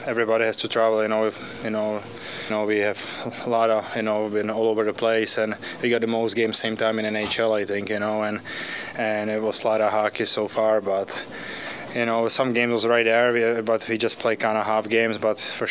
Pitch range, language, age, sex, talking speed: 105-110 Hz, English, 20-39, male, 245 wpm